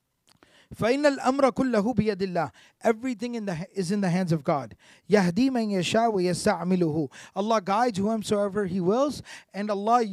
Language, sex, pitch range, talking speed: English, male, 170-215 Hz, 120 wpm